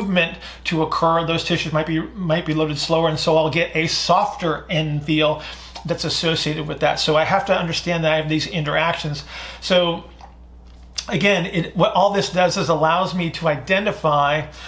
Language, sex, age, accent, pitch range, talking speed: English, male, 40-59, American, 155-170 Hz, 180 wpm